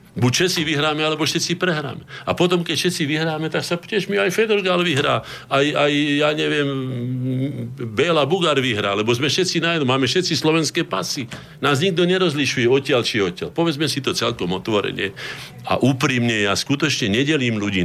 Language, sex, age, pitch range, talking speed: Slovak, male, 50-69, 105-155 Hz, 170 wpm